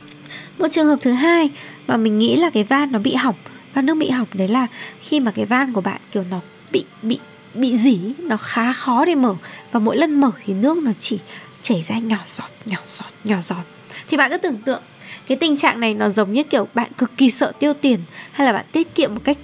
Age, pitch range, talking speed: 10-29, 215-290 Hz, 245 wpm